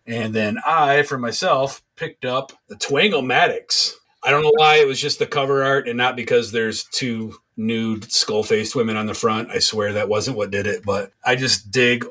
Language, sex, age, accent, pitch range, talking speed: English, male, 30-49, American, 105-125 Hz, 210 wpm